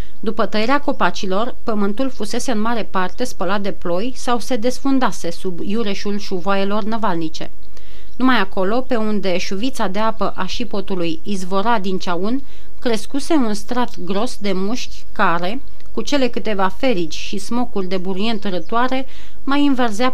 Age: 30-49